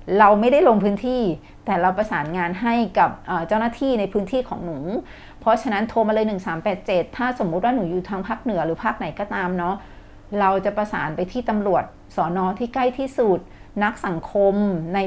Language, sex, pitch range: Thai, female, 180-225 Hz